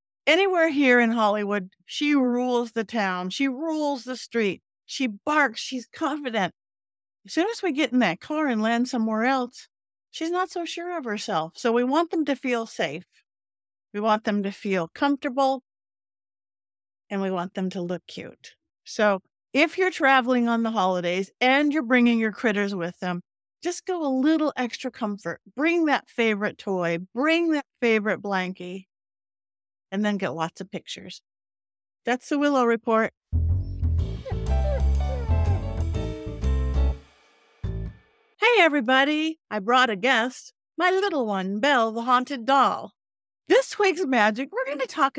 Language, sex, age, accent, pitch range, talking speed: English, female, 50-69, American, 185-280 Hz, 145 wpm